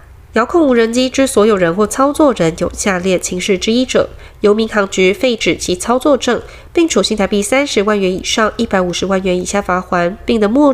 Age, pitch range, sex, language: 20-39, 185-245 Hz, female, Chinese